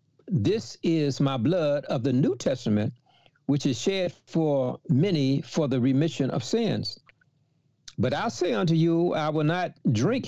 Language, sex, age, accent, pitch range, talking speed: English, male, 60-79, American, 130-170 Hz, 160 wpm